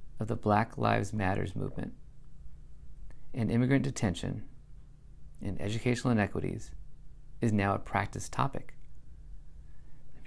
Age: 40-59